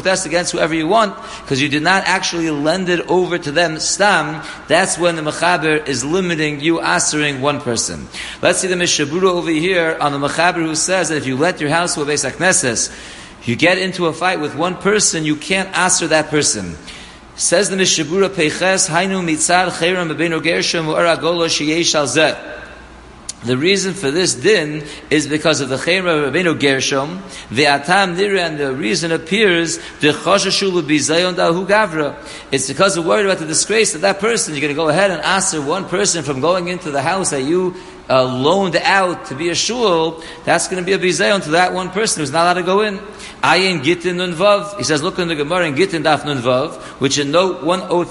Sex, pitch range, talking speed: male, 150-185 Hz, 195 wpm